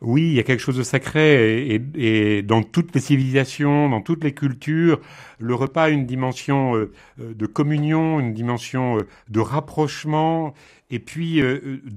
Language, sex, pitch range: French, male, 115-150 Hz